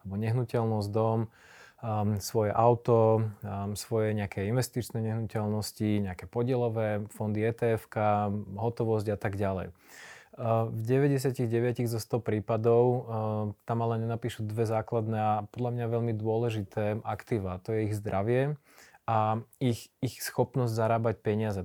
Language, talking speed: Slovak, 130 wpm